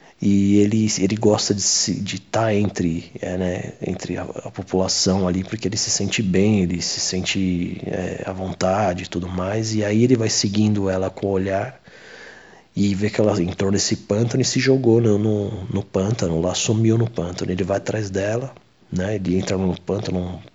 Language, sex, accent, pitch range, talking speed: Portuguese, male, Brazilian, 95-110 Hz, 195 wpm